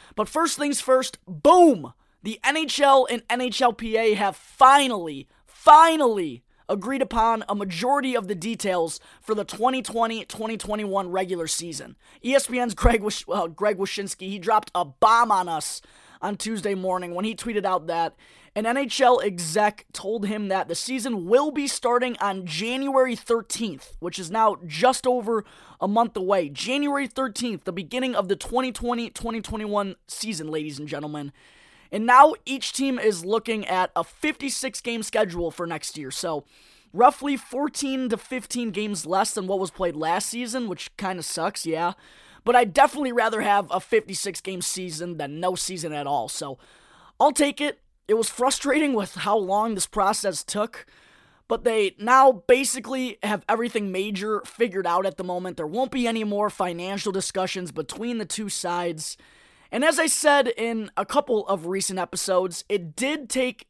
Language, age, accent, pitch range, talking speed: English, 20-39, American, 185-245 Hz, 160 wpm